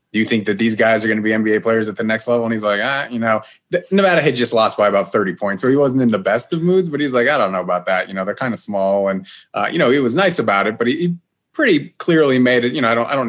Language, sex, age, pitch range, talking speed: English, male, 30-49, 100-125 Hz, 340 wpm